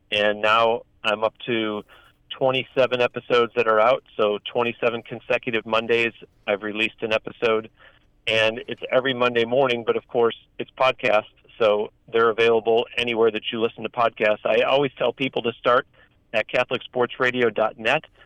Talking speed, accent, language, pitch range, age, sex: 150 wpm, American, English, 110-125 Hz, 40-59, male